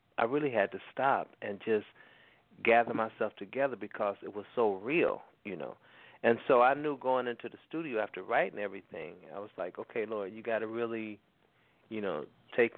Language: English